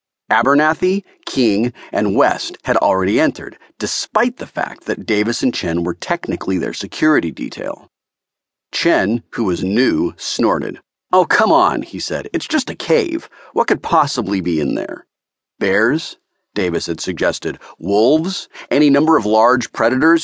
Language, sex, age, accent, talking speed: English, male, 40-59, American, 145 wpm